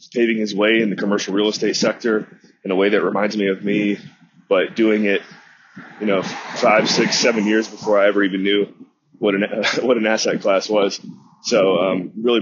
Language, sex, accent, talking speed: English, male, American, 205 wpm